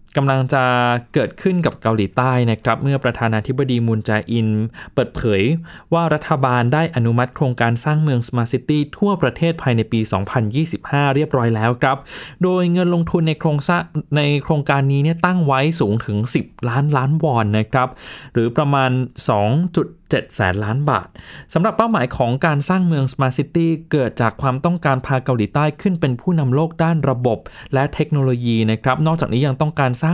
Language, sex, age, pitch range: Thai, male, 20-39, 120-155 Hz